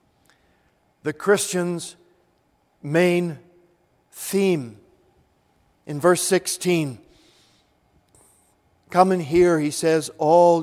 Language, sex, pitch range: English, male, 155-200 Hz